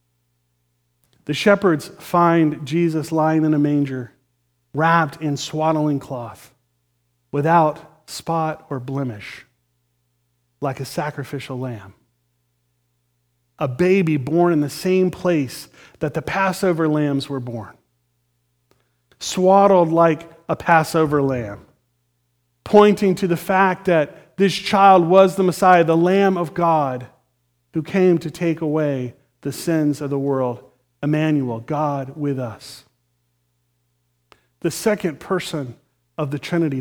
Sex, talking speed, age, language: male, 115 wpm, 40-59, English